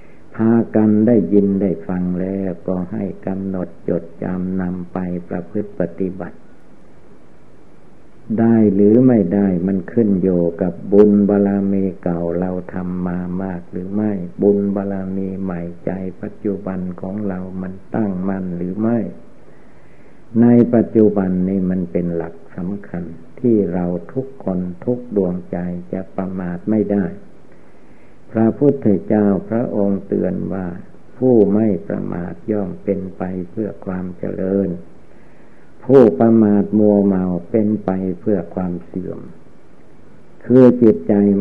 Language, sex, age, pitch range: Thai, male, 60-79, 90-105 Hz